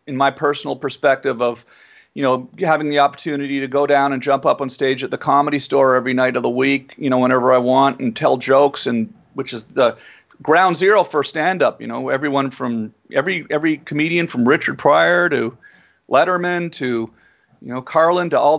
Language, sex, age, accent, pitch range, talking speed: English, male, 40-59, American, 120-145 Hz, 195 wpm